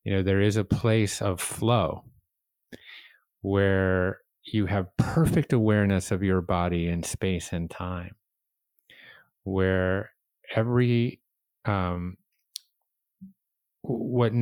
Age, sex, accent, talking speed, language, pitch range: 30-49, male, American, 100 wpm, English, 90-105 Hz